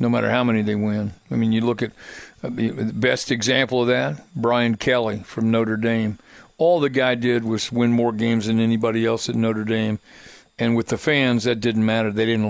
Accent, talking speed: American, 210 wpm